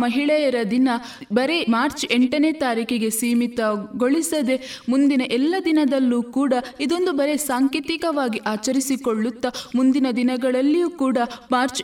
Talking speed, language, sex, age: 95 wpm, Kannada, female, 20-39